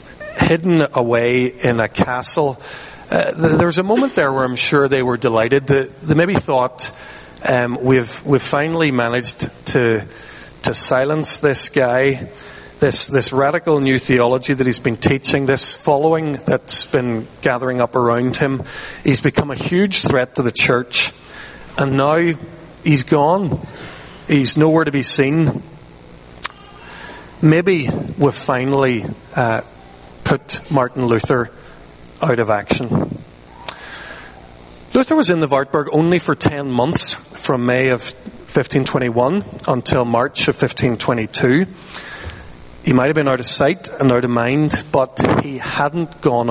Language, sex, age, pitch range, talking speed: English, male, 40-59, 115-145 Hz, 135 wpm